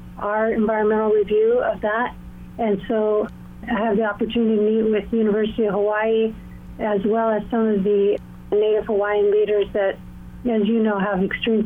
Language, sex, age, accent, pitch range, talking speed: English, female, 40-59, American, 195-225 Hz, 170 wpm